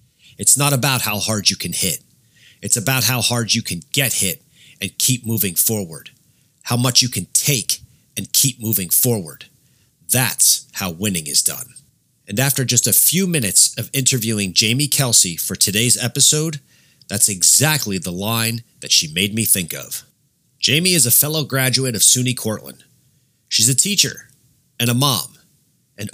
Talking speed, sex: 165 wpm, male